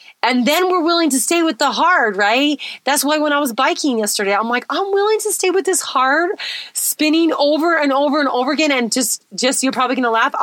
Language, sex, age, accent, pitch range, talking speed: English, female, 30-49, American, 205-280 Hz, 235 wpm